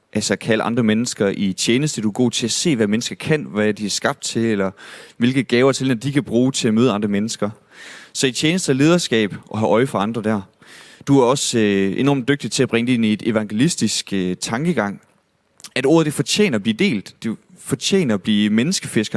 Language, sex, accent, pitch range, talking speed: Danish, male, native, 105-135 Hz, 230 wpm